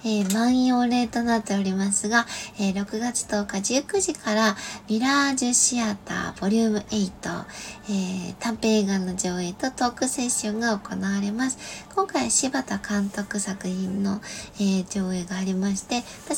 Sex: female